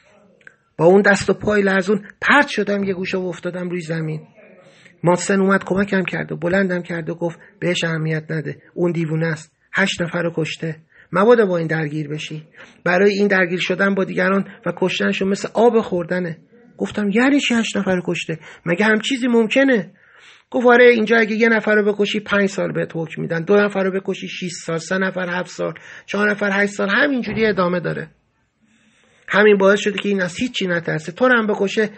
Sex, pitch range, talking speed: male, 165-210 Hz, 190 wpm